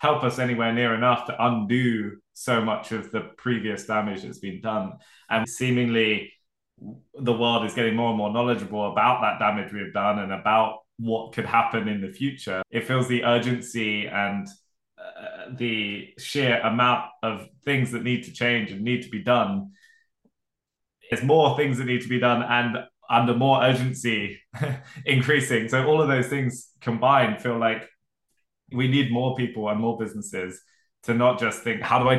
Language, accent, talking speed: English, British, 175 wpm